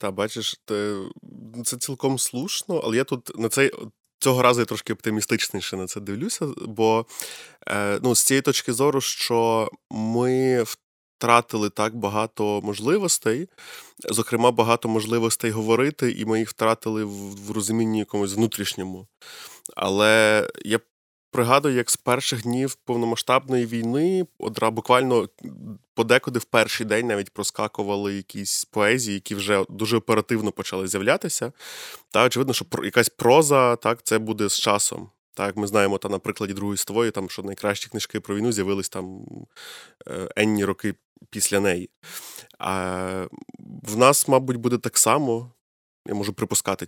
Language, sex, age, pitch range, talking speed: Ukrainian, male, 20-39, 100-120 Hz, 135 wpm